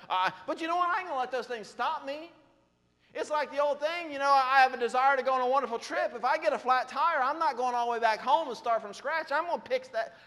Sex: male